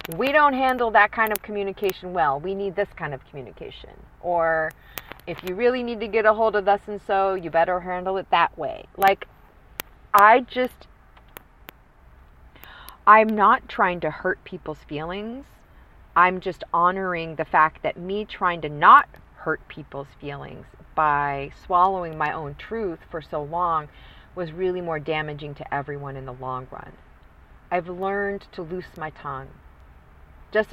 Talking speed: 160 wpm